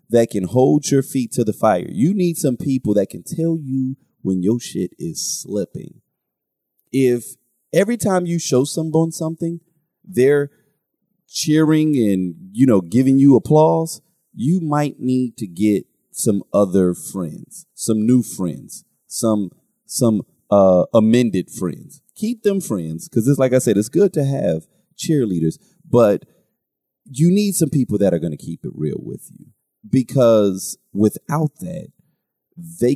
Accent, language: American, English